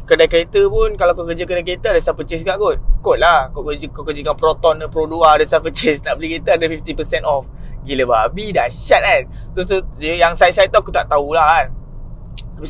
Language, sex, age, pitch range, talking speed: Malay, male, 20-39, 155-250 Hz, 225 wpm